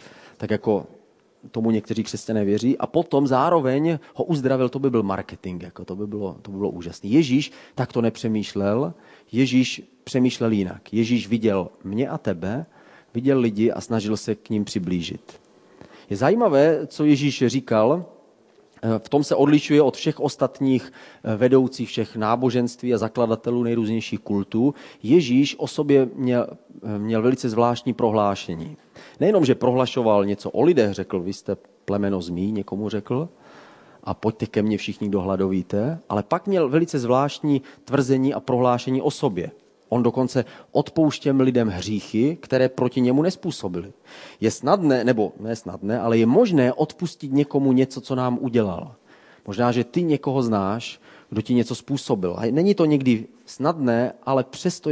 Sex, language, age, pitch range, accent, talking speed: male, Czech, 30-49, 105-135 Hz, native, 150 wpm